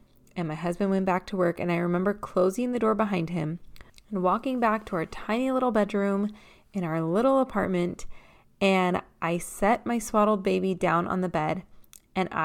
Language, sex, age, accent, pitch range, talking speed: English, female, 20-39, American, 180-220 Hz, 185 wpm